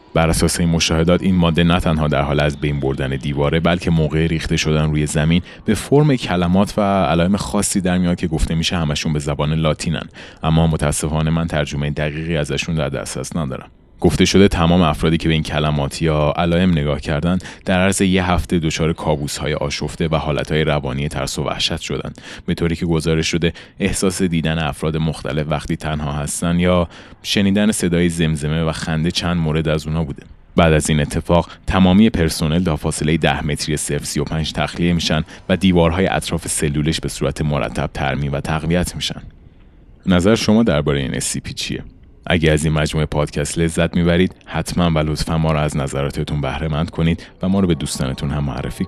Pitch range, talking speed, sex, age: 75-85 Hz, 185 wpm, male, 30-49